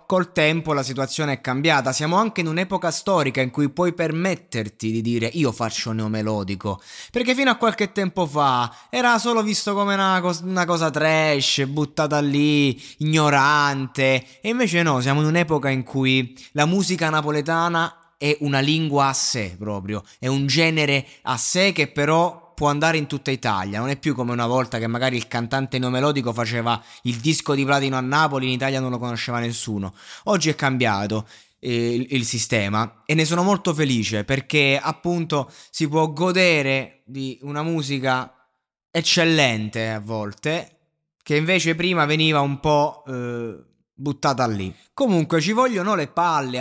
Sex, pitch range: male, 115-160 Hz